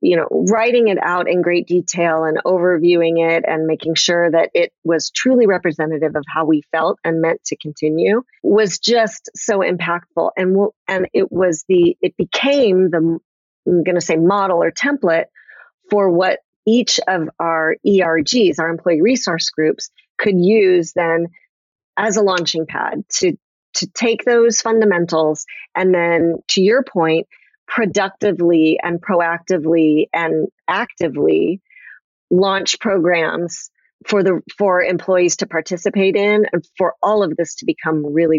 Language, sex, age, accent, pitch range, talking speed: English, female, 30-49, American, 165-205 Hz, 150 wpm